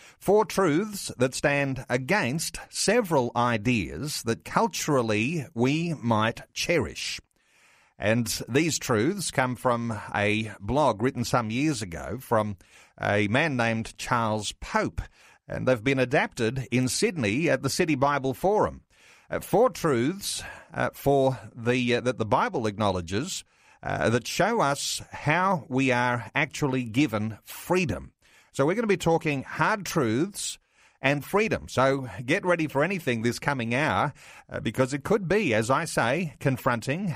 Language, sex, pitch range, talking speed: English, male, 115-150 Hz, 135 wpm